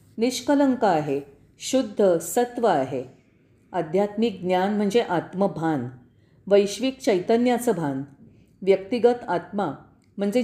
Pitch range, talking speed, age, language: 170-240 Hz, 85 wpm, 40-59, Marathi